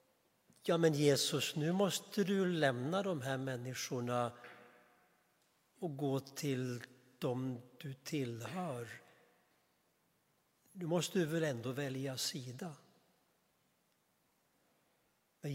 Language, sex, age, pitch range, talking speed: Swedish, male, 60-79, 125-160 Hz, 95 wpm